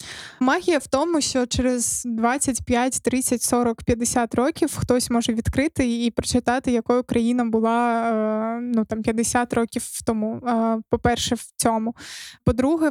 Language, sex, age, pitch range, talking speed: Ukrainian, female, 20-39, 235-255 Hz, 125 wpm